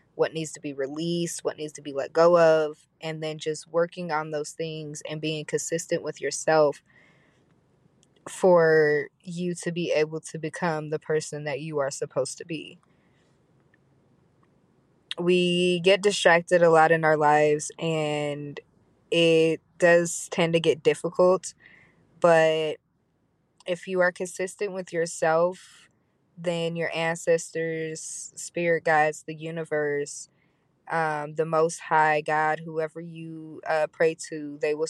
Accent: American